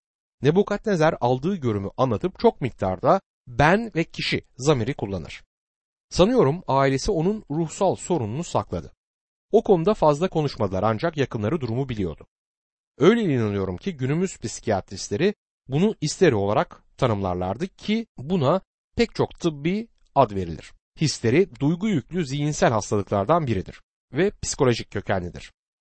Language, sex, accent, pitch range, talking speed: Turkish, male, native, 115-180 Hz, 115 wpm